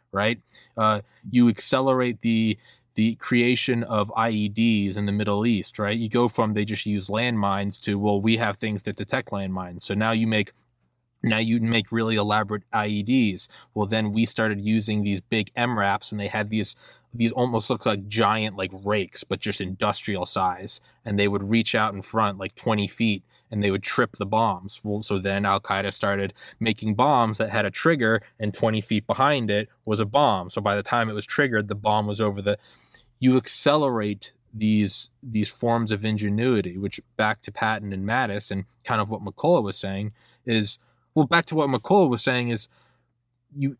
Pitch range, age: 105-120 Hz, 20-39